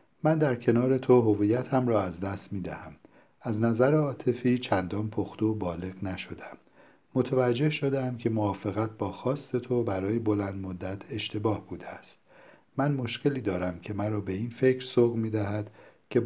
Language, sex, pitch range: Persian, male, 100-135 Hz